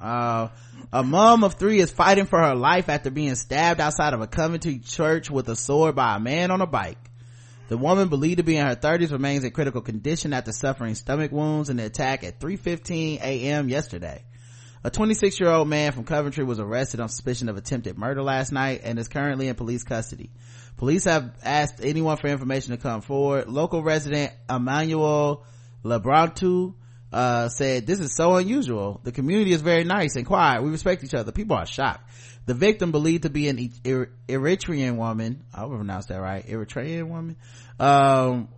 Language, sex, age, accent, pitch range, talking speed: English, male, 30-49, American, 120-155 Hz, 185 wpm